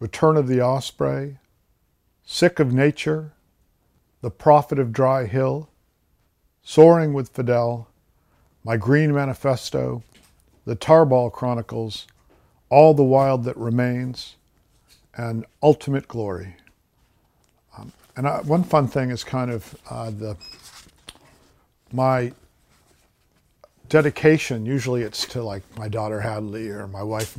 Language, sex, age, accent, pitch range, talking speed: English, male, 50-69, American, 110-135 Hz, 110 wpm